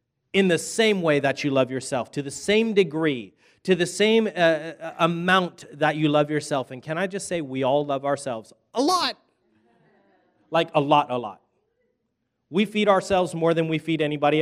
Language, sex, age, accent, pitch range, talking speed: English, male, 30-49, American, 140-185 Hz, 185 wpm